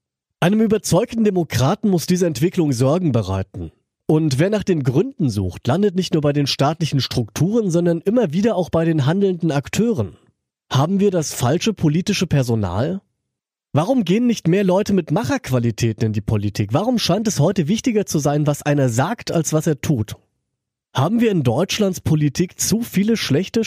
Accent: German